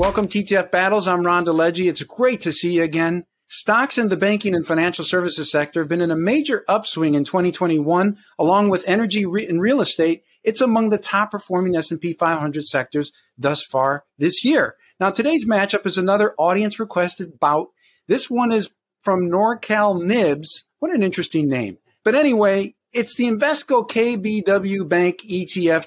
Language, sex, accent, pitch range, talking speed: English, male, American, 170-215 Hz, 170 wpm